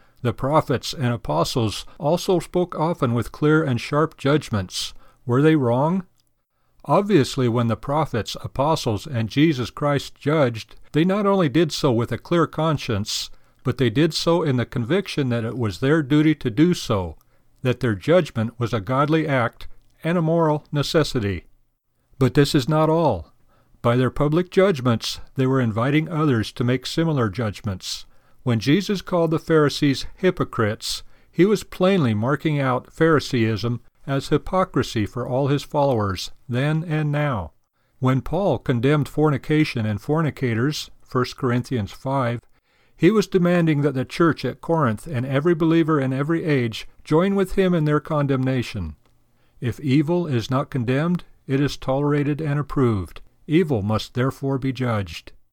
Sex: male